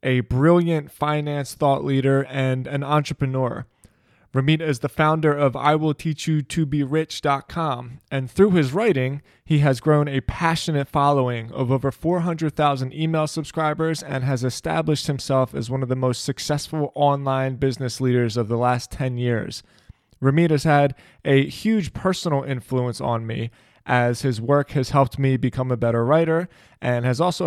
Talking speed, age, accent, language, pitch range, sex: 150 wpm, 20-39, American, English, 125-150 Hz, male